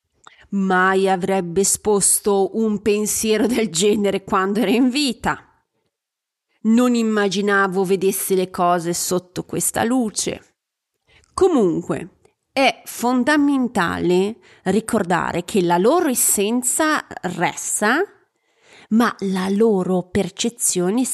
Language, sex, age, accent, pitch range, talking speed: Italian, female, 30-49, native, 185-245 Hz, 90 wpm